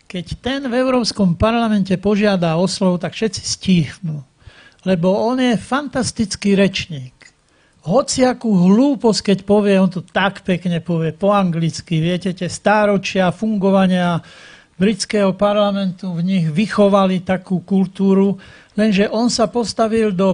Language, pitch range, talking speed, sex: Slovak, 180-215 Hz, 130 wpm, male